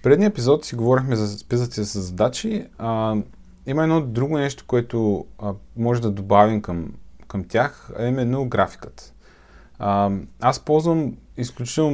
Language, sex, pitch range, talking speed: Bulgarian, male, 100-120 Hz, 155 wpm